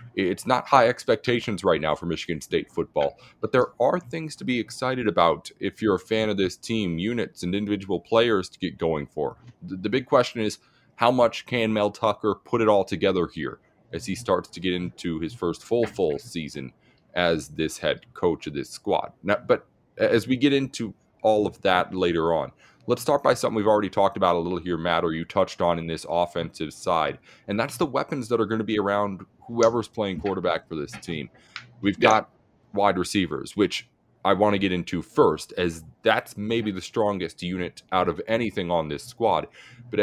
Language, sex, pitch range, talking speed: English, male, 85-115 Hz, 200 wpm